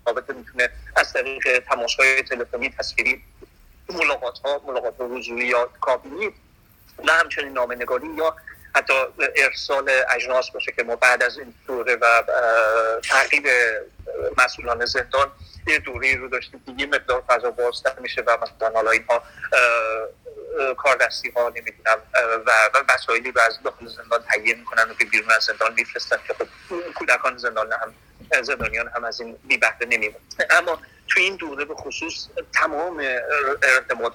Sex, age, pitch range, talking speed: male, 30-49, 120-190 Hz, 140 wpm